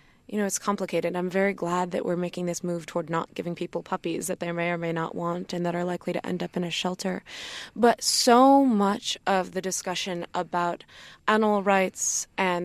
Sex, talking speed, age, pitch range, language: female, 210 wpm, 20-39, 175-200 Hz, English